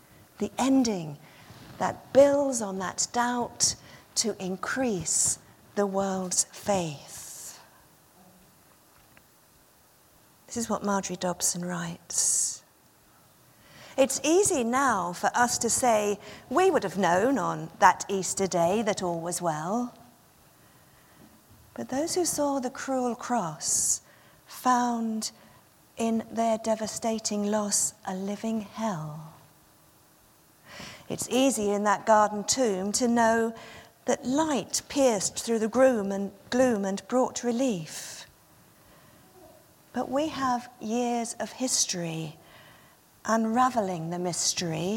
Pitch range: 195-245 Hz